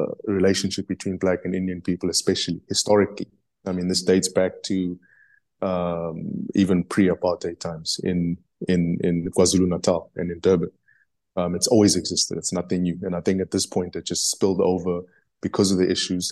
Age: 20-39